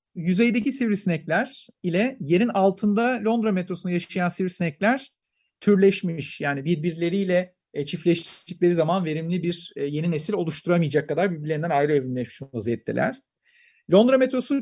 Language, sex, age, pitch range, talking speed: Turkish, male, 40-59, 155-210 Hz, 115 wpm